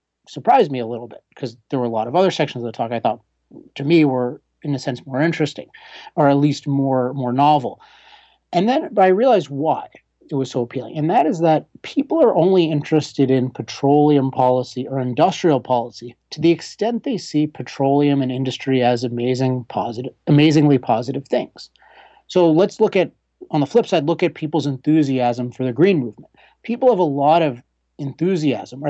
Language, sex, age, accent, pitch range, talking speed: English, male, 30-49, American, 125-165 Hz, 195 wpm